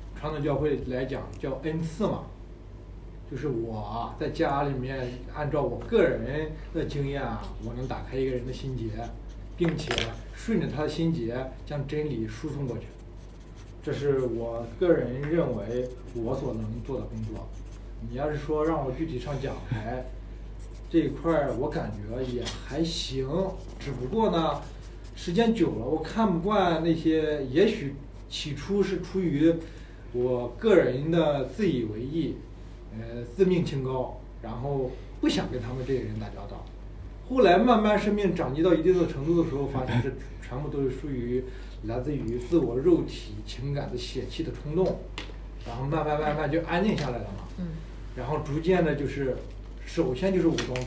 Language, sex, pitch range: Chinese, male, 115-160 Hz